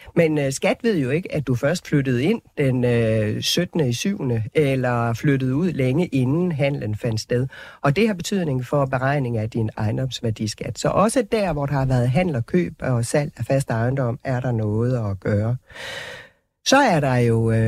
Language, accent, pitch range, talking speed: Danish, native, 120-165 Hz, 190 wpm